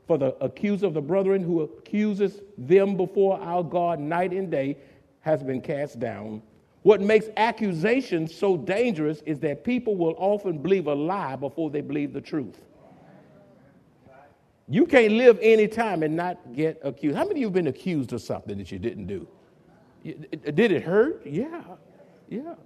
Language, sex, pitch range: English, male, 150-215 Hz